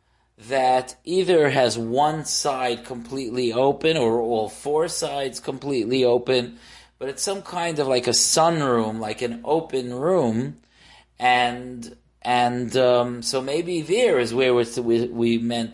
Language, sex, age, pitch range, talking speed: English, male, 30-49, 115-140 Hz, 140 wpm